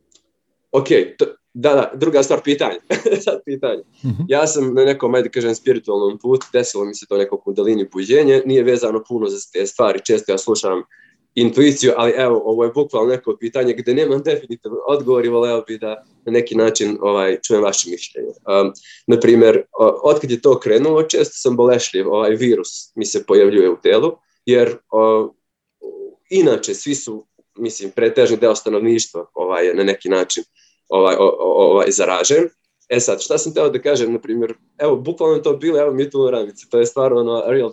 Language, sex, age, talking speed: Croatian, male, 20-39, 175 wpm